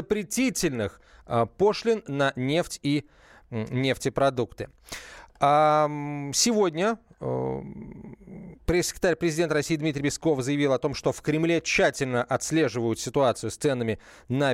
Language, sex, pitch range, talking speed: Russian, male, 125-165 Hz, 100 wpm